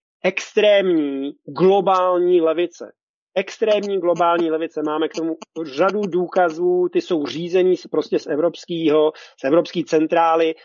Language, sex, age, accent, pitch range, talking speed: Czech, male, 40-59, native, 160-195 Hz, 115 wpm